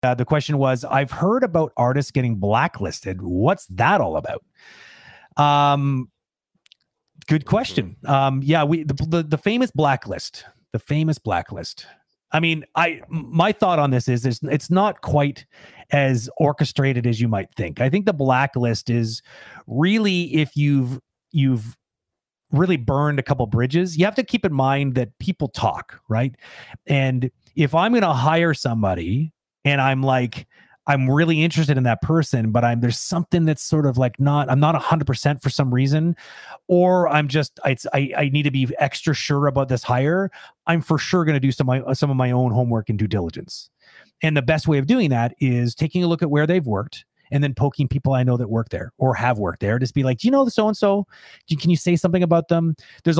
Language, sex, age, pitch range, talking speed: English, male, 30-49, 130-160 Hz, 200 wpm